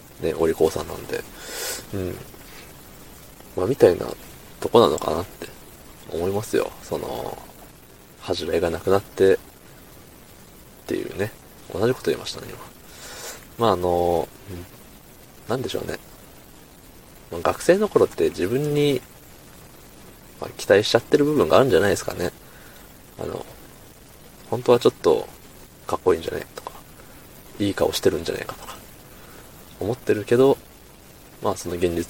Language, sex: Japanese, male